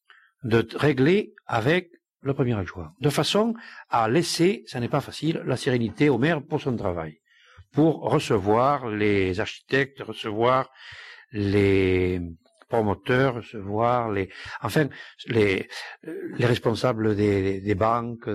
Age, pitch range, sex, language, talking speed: 60-79, 110-155 Hz, male, French, 125 wpm